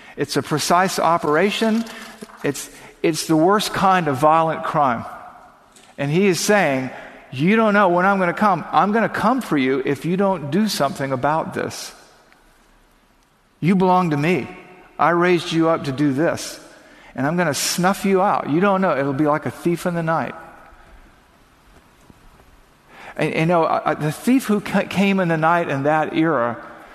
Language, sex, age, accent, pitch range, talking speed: English, male, 50-69, American, 140-185 Hz, 170 wpm